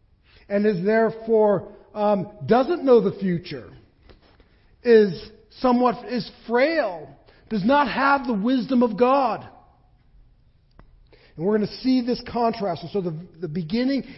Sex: male